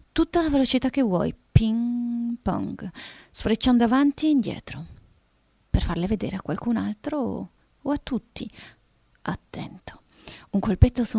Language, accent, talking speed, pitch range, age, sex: Italian, native, 135 wpm, 195-245 Hz, 30-49, female